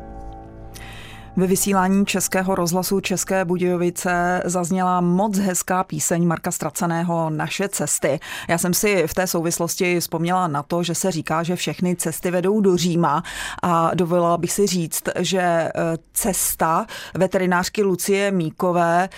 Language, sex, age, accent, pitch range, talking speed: Czech, female, 30-49, native, 165-190 Hz, 130 wpm